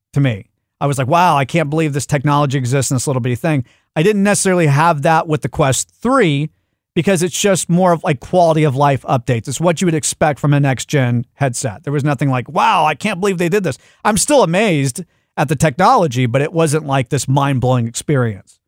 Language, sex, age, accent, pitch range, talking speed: English, male, 40-59, American, 130-165 Hz, 220 wpm